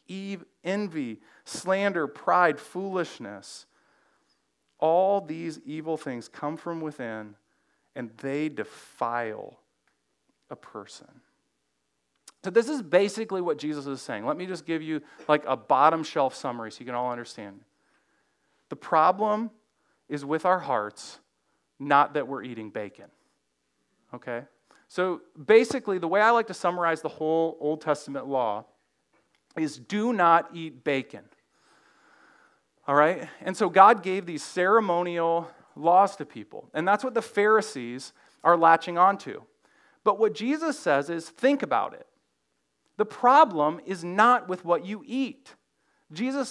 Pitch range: 150-225 Hz